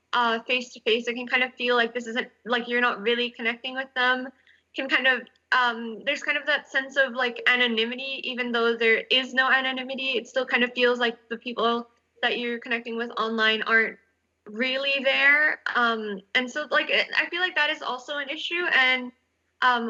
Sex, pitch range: female, 230-270 Hz